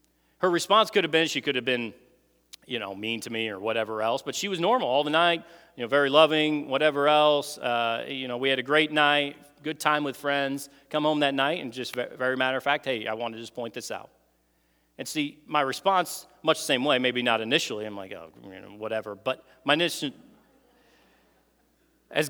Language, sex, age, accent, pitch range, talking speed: English, male, 40-59, American, 125-155 Hz, 220 wpm